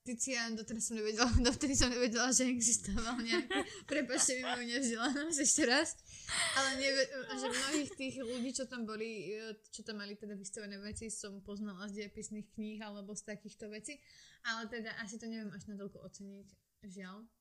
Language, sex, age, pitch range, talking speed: Slovak, female, 20-39, 210-250 Hz, 175 wpm